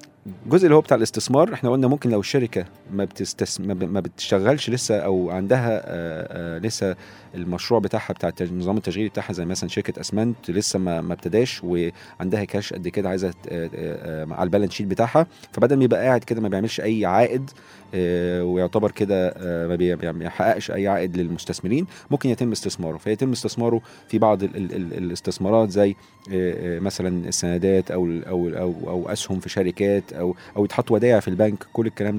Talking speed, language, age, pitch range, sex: 170 wpm, Arabic, 40-59, 90-120 Hz, male